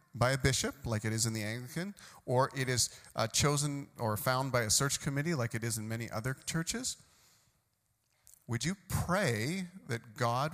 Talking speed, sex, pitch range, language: 180 wpm, male, 115-155 Hz, English